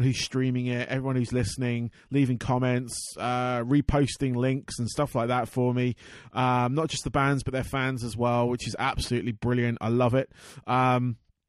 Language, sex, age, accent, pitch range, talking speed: English, male, 30-49, British, 125-145 Hz, 185 wpm